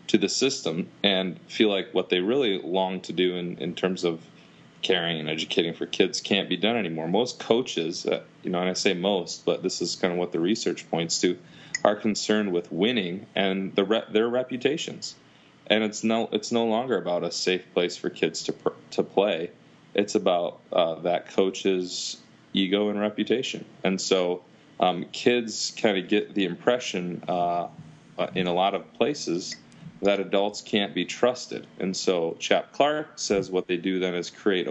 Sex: male